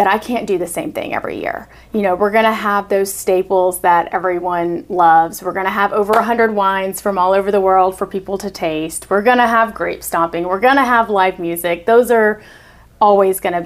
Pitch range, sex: 180-210 Hz, female